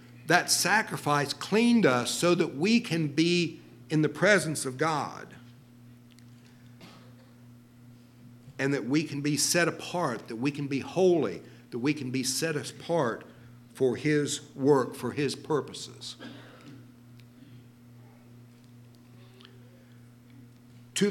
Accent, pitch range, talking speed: American, 120-175 Hz, 110 wpm